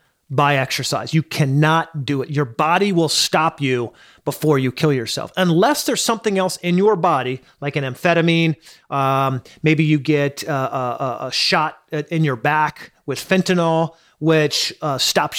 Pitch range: 140-180 Hz